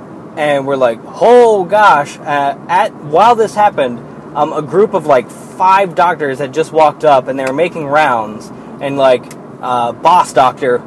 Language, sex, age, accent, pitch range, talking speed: English, male, 20-39, American, 140-180 Hz, 180 wpm